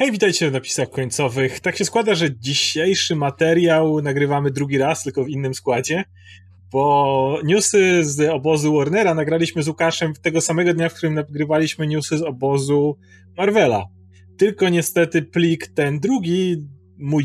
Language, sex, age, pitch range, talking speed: Polish, male, 30-49, 130-165 Hz, 145 wpm